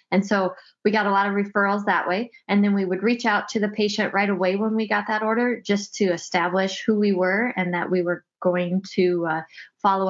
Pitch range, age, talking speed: 185-215 Hz, 20-39, 240 wpm